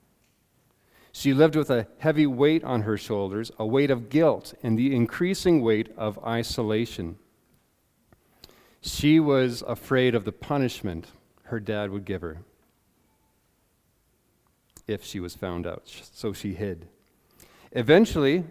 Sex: male